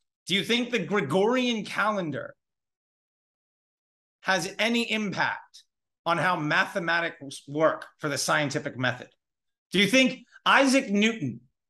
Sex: male